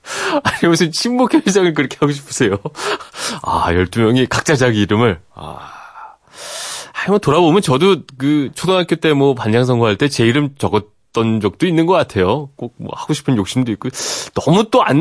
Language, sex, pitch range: Korean, male, 100-150 Hz